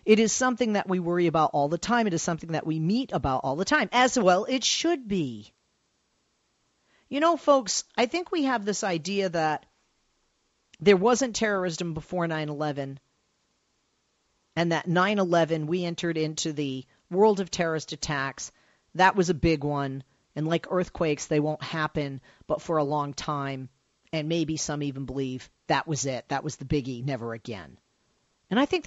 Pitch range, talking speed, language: 150-215 Hz, 175 wpm, English